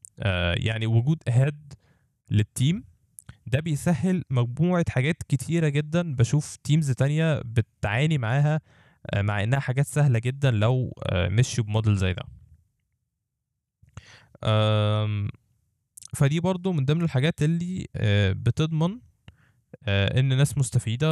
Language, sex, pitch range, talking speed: Arabic, male, 110-140 Hz, 100 wpm